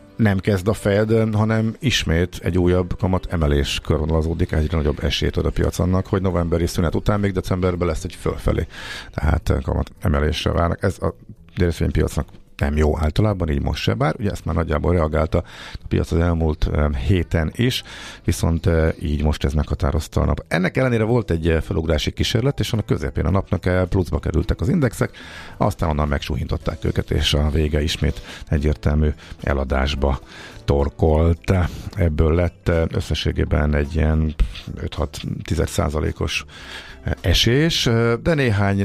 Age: 50-69